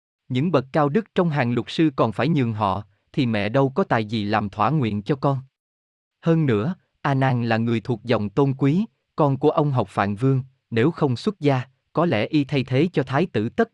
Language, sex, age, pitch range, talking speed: Vietnamese, male, 20-39, 110-155 Hz, 225 wpm